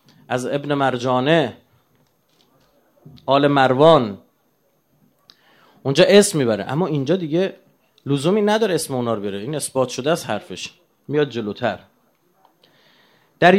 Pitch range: 120-175 Hz